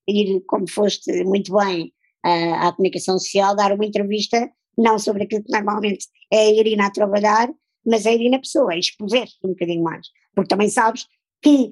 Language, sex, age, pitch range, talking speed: Portuguese, male, 50-69, 190-250 Hz, 185 wpm